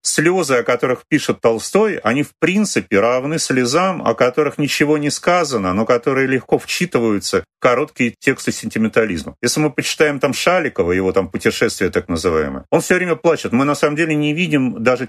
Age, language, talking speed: 40-59, Russian, 170 wpm